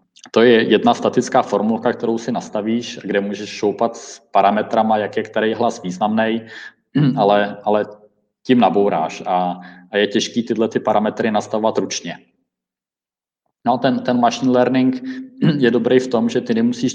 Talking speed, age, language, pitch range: 155 wpm, 20-39, Czech, 100-120 Hz